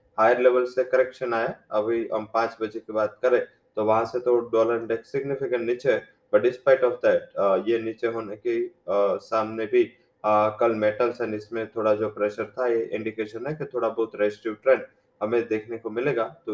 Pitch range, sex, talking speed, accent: 115-125 Hz, male, 190 wpm, Indian